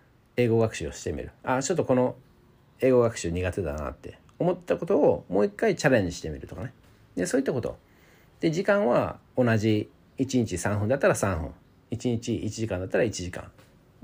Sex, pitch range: male, 90-140 Hz